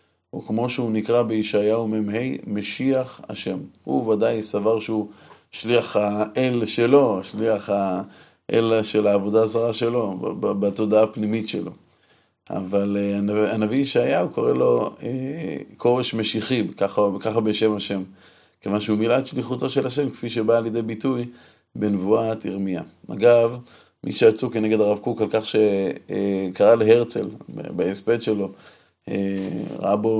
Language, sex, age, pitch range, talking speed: Hebrew, male, 30-49, 105-115 Hz, 125 wpm